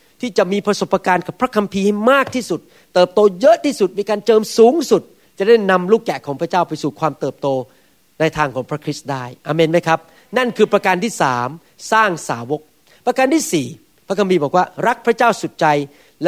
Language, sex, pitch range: Thai, male, 135-200 Hz